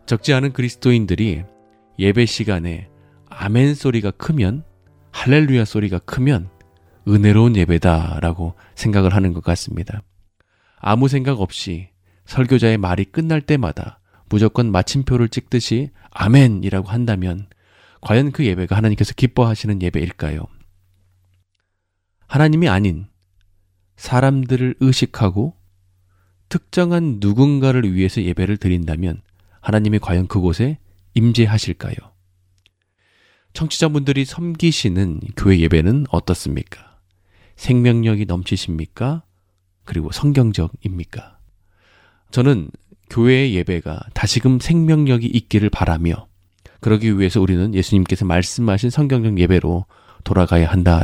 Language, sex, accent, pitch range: Korean, male, native, 90-120 Hz